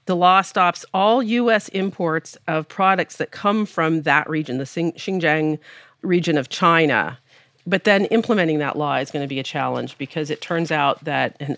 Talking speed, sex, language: 180 wpm, female, English